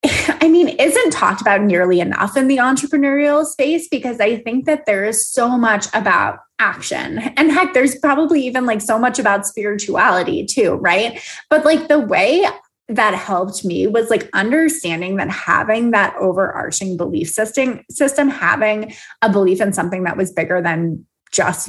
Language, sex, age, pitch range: English, female, 20-39, 195-285 Hz